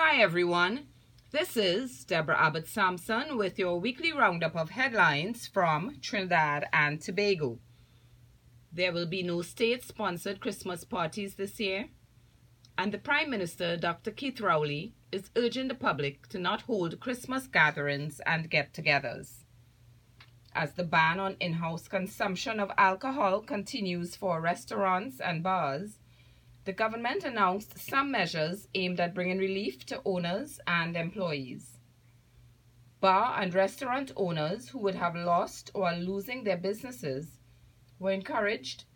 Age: 30-49